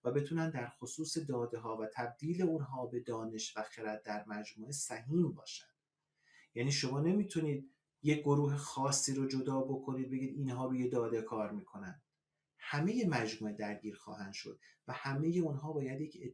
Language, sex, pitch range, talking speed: Persian, male, 125-150 Hz, 160 wpm